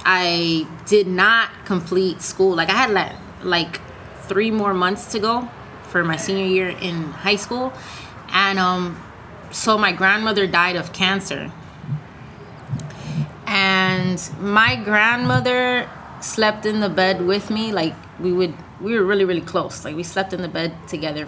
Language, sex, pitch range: English, female, 165-195 Hz